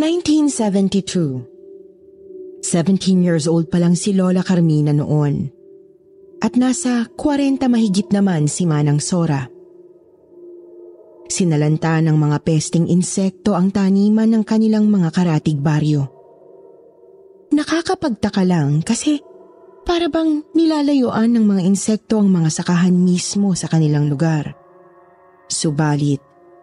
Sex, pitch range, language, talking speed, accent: female, 165-220 Hz, Filipino, 105 wpm, native